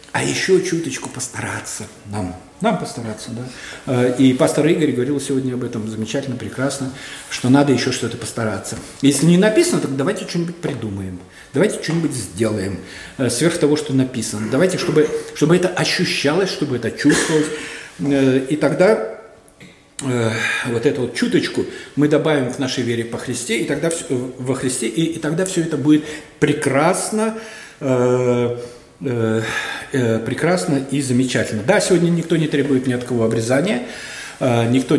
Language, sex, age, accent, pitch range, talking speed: Russian, male, 50-69, native, 120-150 Hz, 140 wpm